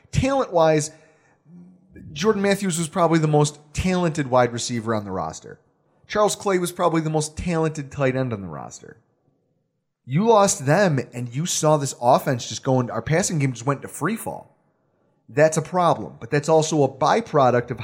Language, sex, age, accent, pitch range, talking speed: English, male, 30-49, American, 135-170 Hz, 175 wpm